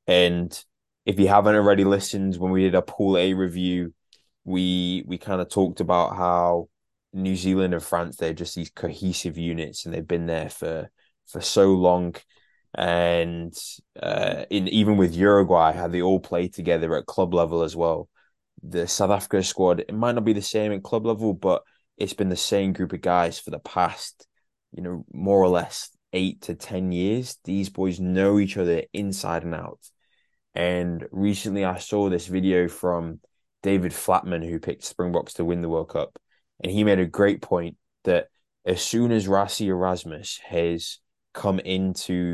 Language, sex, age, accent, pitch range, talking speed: English, male, 20-39, British, 85-100 Hz, 180 wpm